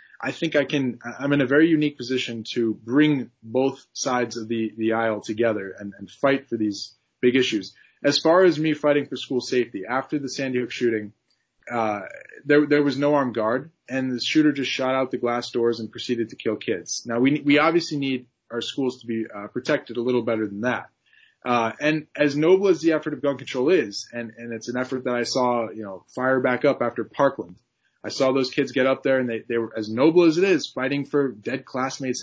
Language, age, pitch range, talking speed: English, 20-39, 115-145 Hz, 225 wpm